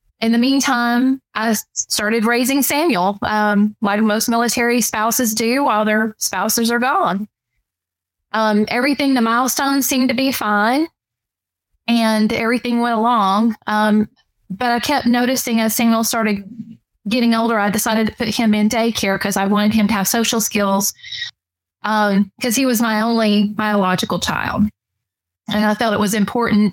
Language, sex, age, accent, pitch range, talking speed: English, female, 20-39, American, 205-235 Hz, 155 wpm